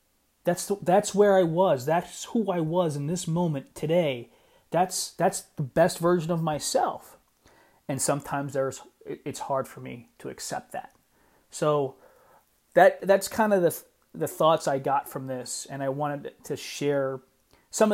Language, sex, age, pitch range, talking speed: English, male, 30-49, 145-190 Hz, 165 wpm